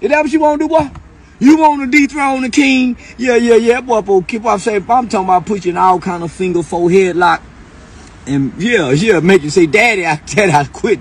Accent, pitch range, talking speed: American, 125-200 Hz, 240 wpm